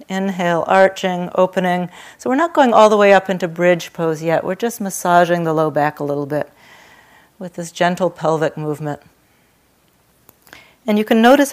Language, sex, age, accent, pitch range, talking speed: English, female, 50-69, American, 170-205 Hz, 170 wpm